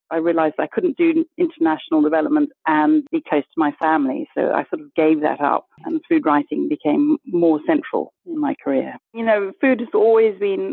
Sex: female